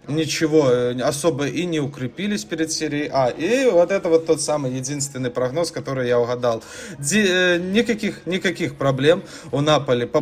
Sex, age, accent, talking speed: male, 20-39, native, 145 wpm